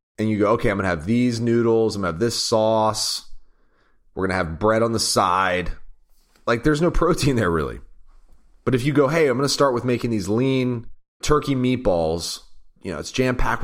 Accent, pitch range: American, 95-125 Hz